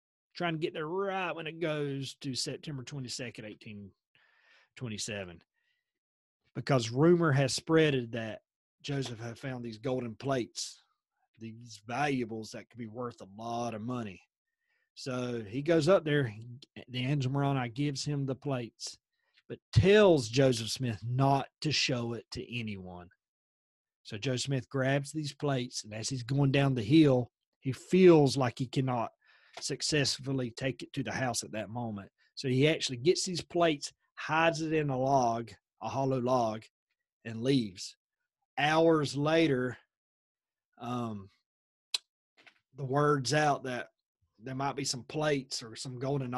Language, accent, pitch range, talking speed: English, American, 120-150 Hz, 145 wpm